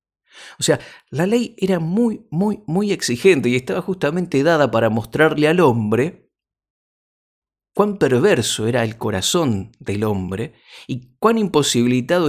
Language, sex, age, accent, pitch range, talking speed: Spanish, male, 50-69, Argentinian, 115-155 Hz, 130 wpm